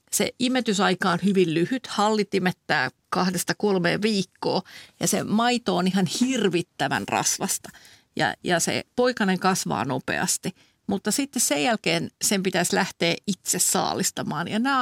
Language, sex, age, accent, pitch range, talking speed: Finnish, female, 50-69, native, 185-230 Hz, 135 wpm